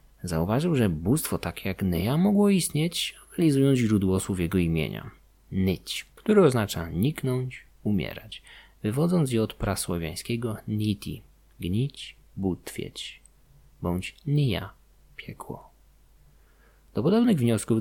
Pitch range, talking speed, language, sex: 90-125 Hz, 105 wpm, Polish, male